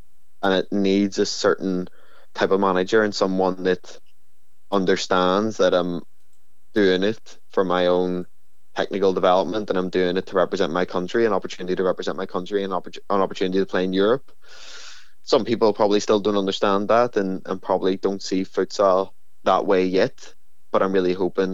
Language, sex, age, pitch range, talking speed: English, male, 20-39, 90-100 Hz, 170 wpm